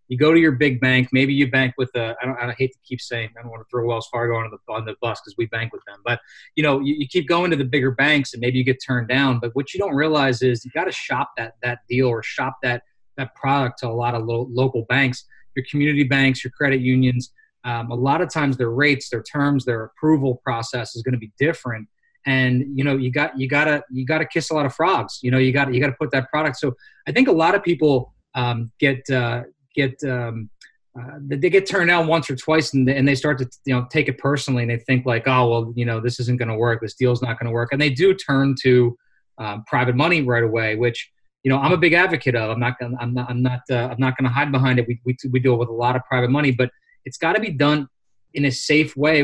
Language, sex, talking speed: English, male, 280 wpm